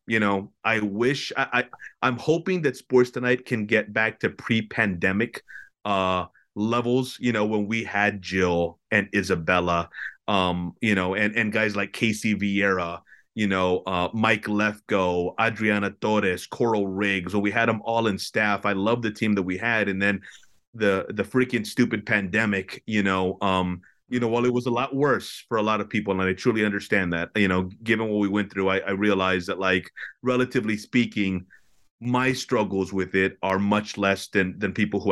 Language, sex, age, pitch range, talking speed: English, male, 30-49, 95-110 Hz, 190 wpm